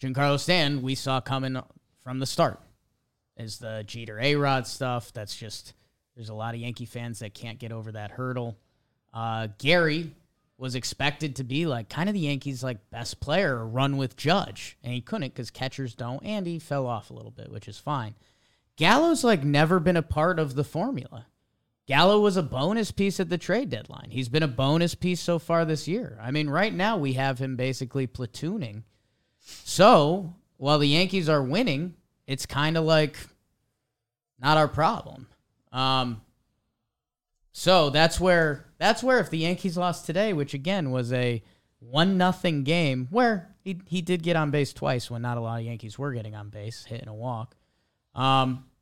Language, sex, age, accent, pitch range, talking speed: English, male, 30-49, American, 120-165 Hz, 185 wpm